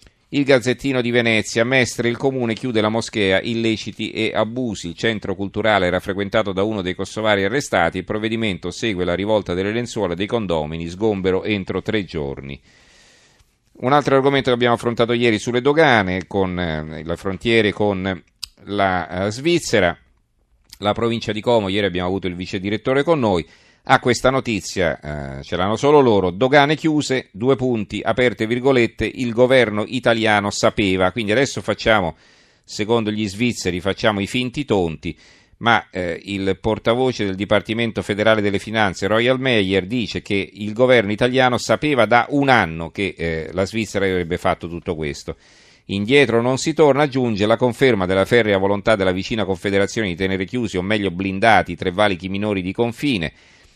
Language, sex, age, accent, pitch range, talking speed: Italian, male, 40-59, native, 95-120 Hz, 160 wpm